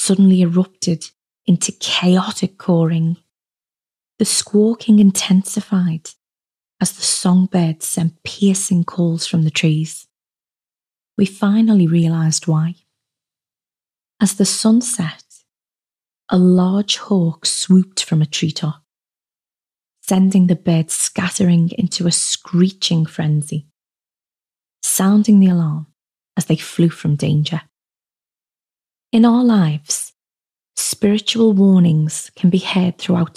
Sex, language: female, English